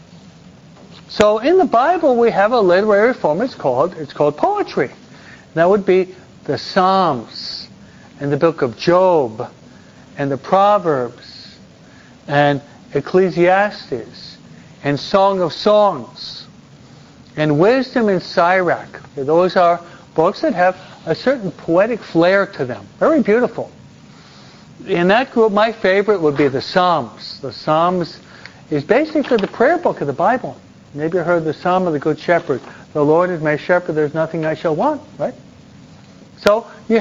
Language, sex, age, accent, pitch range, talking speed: English, male, 60-79, American, 165-215 Hz, 145 wpm